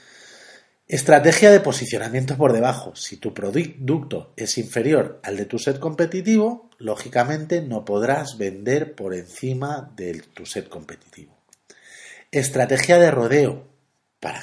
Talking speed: 120 wpm